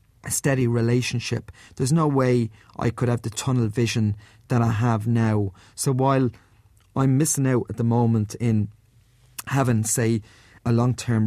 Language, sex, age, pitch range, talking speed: English, male, 30-49, 110-125 Hz, 150 wpm